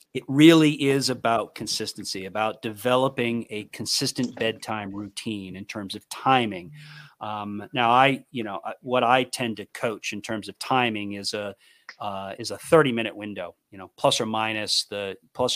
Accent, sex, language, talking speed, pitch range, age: American, male, English, 170 wpm, 100-125 Hz, 40-59